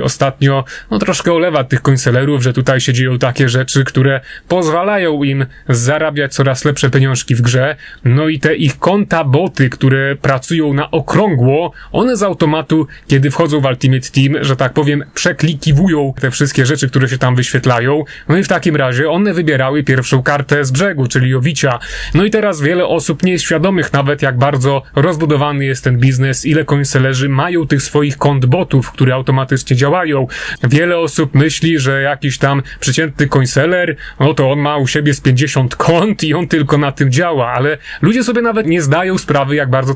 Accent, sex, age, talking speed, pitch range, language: native, male, 30-49, 180 wpm, 135-165 Hz, Polish